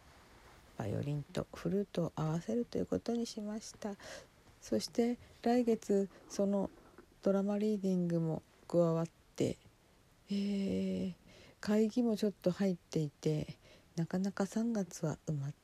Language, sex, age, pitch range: Japanese, female, 50-69, 155-200 Hz